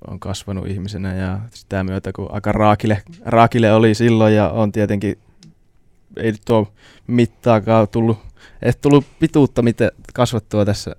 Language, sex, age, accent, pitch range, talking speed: Finnish, male, 20-39, native, 95-105 Hz, 140 wpm